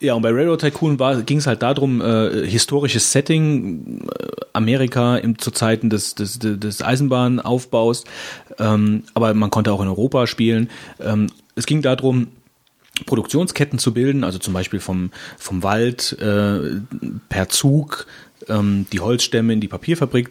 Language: German